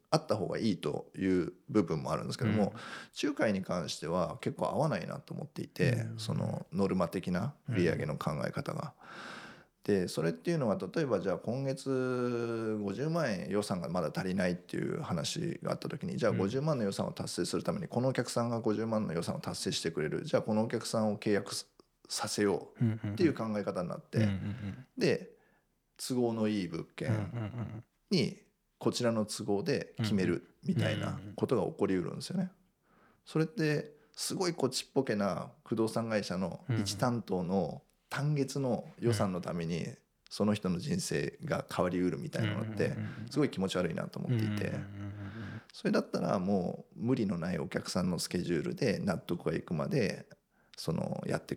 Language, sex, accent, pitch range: Japanese, male, native, 105-145 Hz